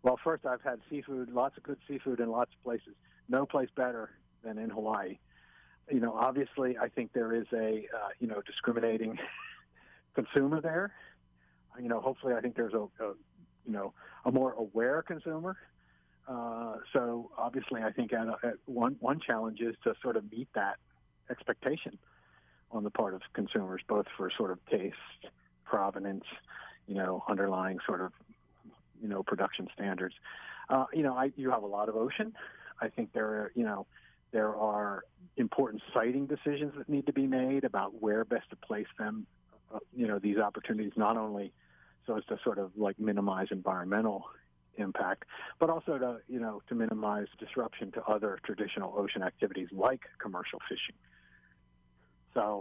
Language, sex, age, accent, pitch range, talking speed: English, male, 50-69, American, 100-130 Hz, 170 wpm